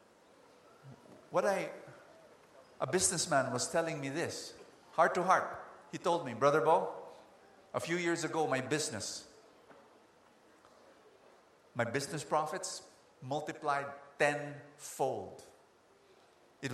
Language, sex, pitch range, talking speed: English, male, 110-145 Hz, 100 wpm